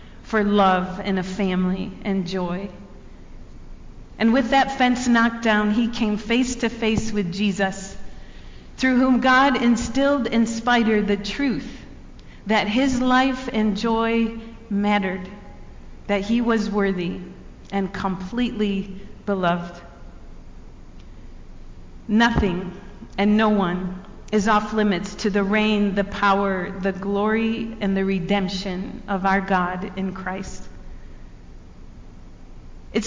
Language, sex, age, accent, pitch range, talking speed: English, female, 40-59, American, 190-230 Hz, 115 wpm